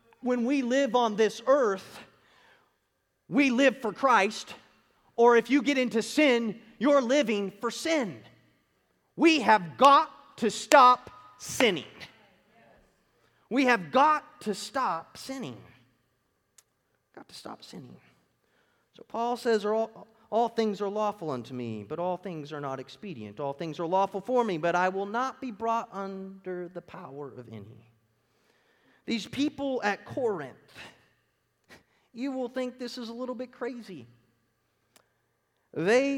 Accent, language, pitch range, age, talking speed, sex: American, English, 190-265 Hz, 30-49, 135 wpm, male